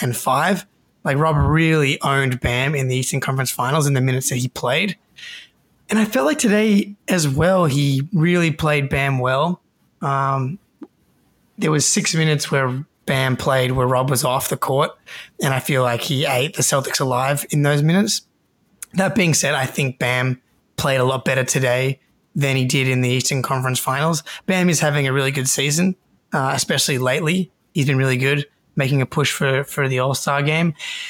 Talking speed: 190 wpm